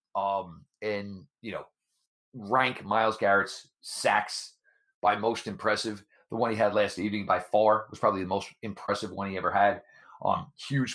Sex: male